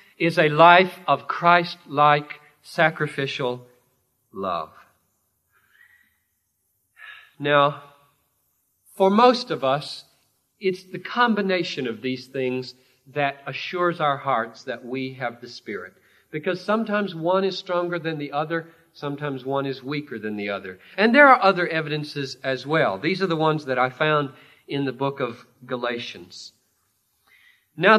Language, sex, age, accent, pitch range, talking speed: English, male, 50-69, American, 130-190 Hz, 135 wpm